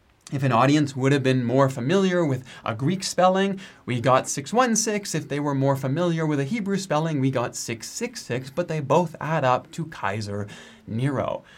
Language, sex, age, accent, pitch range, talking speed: English, male, 30-49, American, 125-165 Hz, 180 wpm